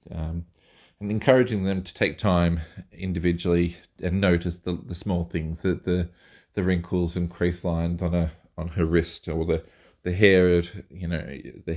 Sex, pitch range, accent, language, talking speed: male, 85-100 Hz, Australian, English, 170 wpm